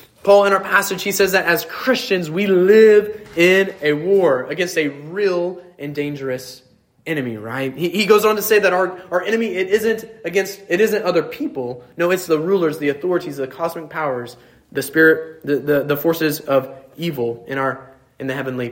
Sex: male